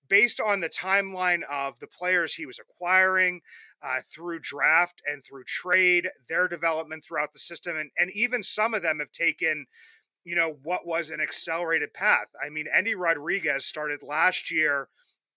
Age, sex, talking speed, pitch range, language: 30-49, male, 170 wpm, 150-185 Hz, English